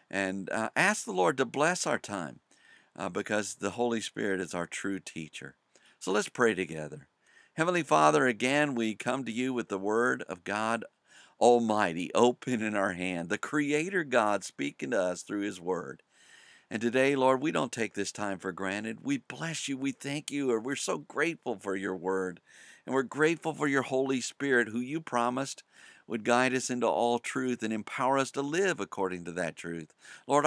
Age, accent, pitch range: 50-69, American, 95-130 Hz